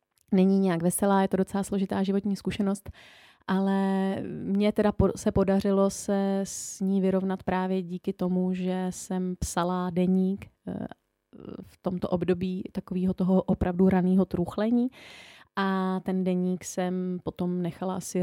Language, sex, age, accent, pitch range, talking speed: Czech, female, 30-49, native, 170-190 Hz, 130 wpm